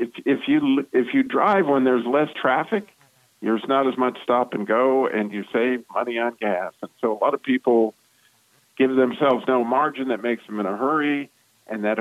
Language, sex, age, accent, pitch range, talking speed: English, male, 50-69, American, 110-130 Hz, 205 wpm